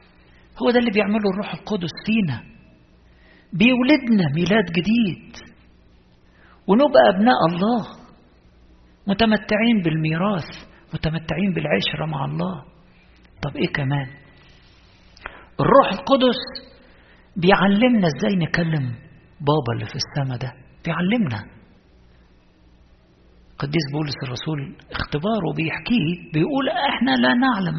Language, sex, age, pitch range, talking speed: Arabic, male, 50-69, 125-205 Hz, 90 wpm